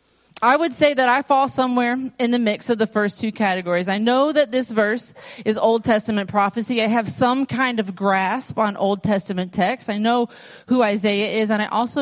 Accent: American